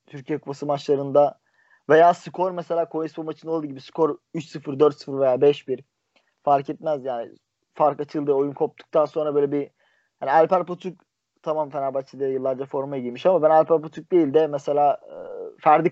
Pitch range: 135-160 Hz